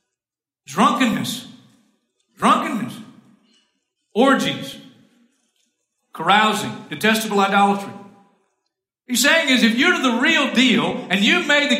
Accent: American